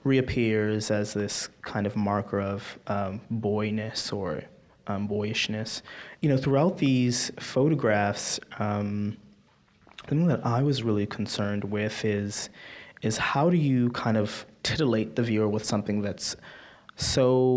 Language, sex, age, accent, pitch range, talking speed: English, male, 20-39, American, 105-125 Hz, 135 wpm